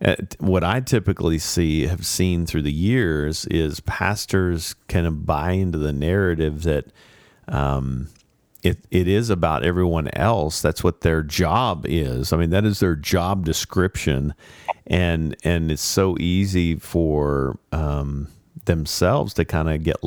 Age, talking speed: 40-59, 145 wpm